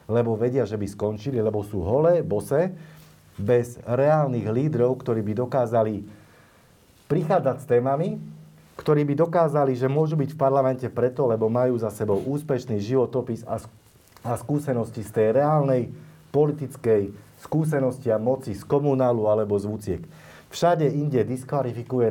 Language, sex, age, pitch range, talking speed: Slovak, male, 40-59, 110-145 Hz, 135 wpm